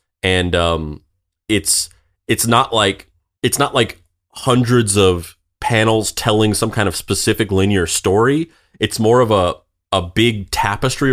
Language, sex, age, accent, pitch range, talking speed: English, male, 30-49, American, 90-110 Hz, 140 wpm